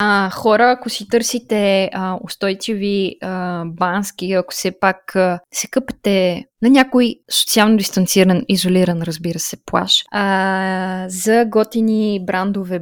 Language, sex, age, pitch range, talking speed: Bulgarian, female, 20-39, 190-230 Hz, 120 wpm